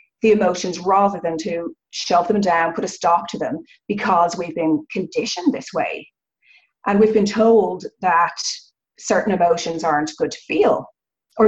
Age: 30-49